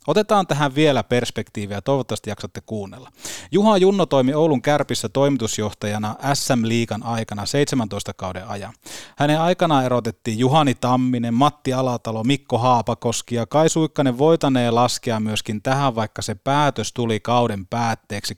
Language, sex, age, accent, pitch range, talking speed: Finnish, male, 30-49, native, 110-135 Hz, 130 wpm